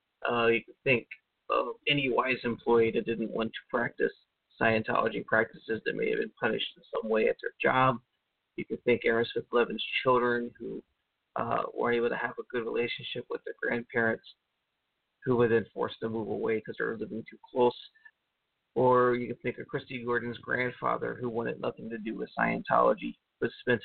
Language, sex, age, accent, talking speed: English, male, 30-49, American, 185 wpm